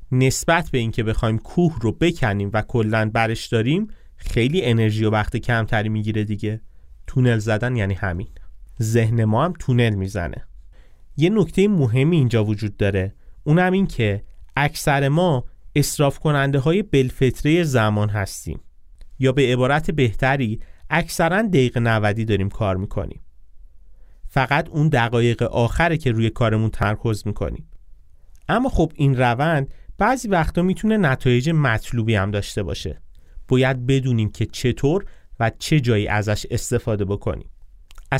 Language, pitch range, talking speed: Persian, 110-165 Hz, 135 wpm